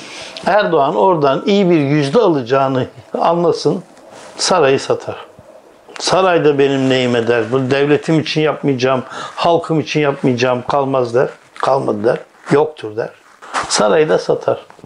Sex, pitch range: male, 130-180 Hz